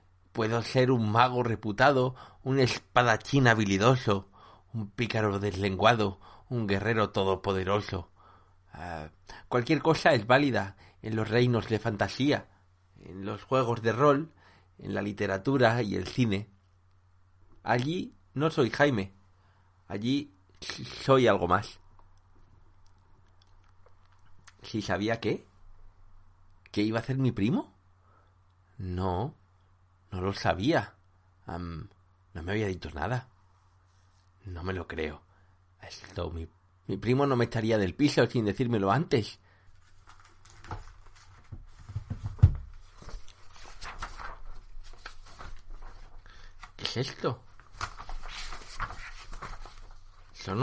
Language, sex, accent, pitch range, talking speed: Spanish, male, Spanish, 95-110 Hz, 95 wpm